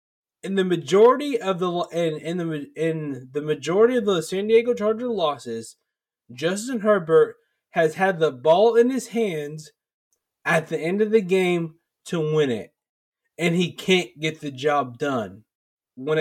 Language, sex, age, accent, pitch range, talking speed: English, male, 20-39, American, 155-210 Hz, 160 wpm